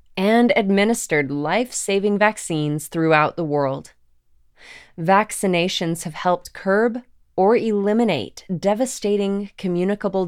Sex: female